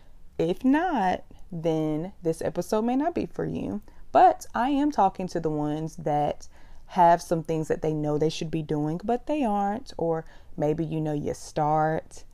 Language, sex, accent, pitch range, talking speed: English, female, American, 150-190 Hz, 180 wpm